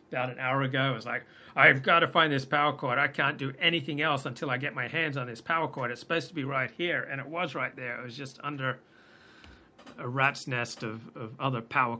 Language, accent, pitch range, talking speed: English, American, 125-150 Hz, 250 wpm